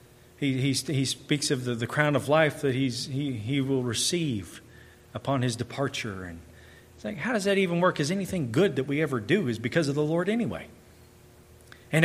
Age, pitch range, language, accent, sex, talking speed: 40-59, 120-150 Hz, English, American, male, 205 wpm